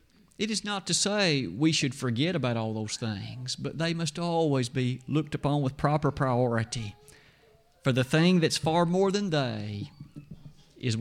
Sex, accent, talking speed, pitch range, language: male, American, 170 wpm, 135-175 Hz, English